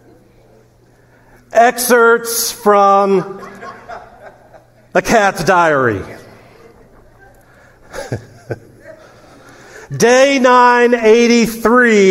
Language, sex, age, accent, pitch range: English, male, 50-69, American, 140-210 Hz